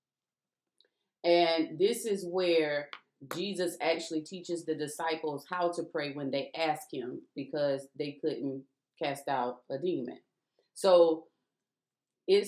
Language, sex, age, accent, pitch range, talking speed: English, female, 30-49, American, 150-190 Hz, 120 wpm